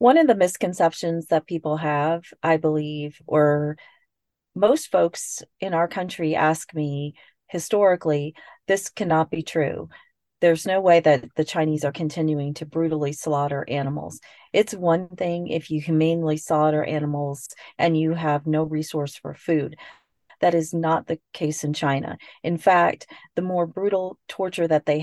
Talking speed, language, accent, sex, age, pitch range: 155 wpm, English, American, female, 40-59, 150-170 Hz